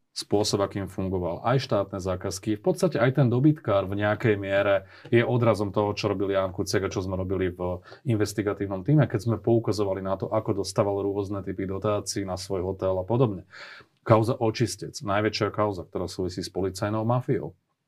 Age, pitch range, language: 30-49, 95-115 Hz, Slovak